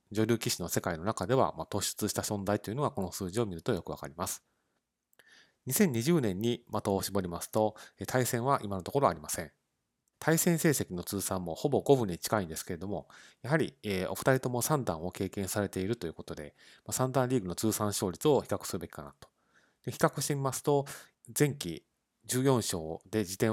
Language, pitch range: Japanese, 90-120 Hz